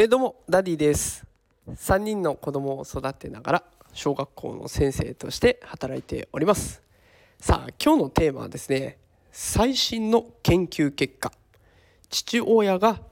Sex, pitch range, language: male, 145-220 Hz, Japanese